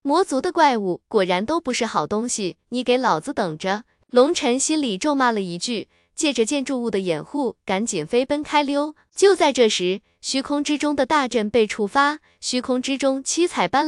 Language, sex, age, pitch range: Chinese, female, 20-39, 215-285 Hz